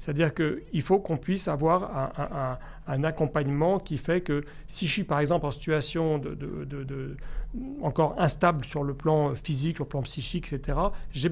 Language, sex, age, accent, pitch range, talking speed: French, male, 40-59, French, 145-170 Hz, 195 wpm